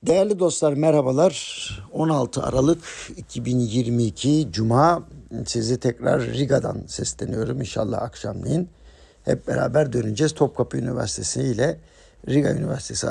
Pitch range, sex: 115-150 Hz, male